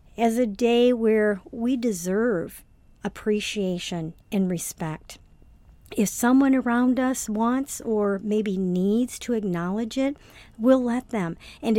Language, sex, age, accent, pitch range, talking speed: English, female, 50-69, American, 195-240 Hz, 120 wpm